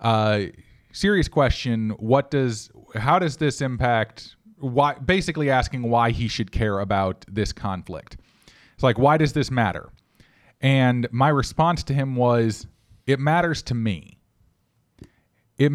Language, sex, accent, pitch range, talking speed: English, male, American, 110-145 Hz, 140 wpm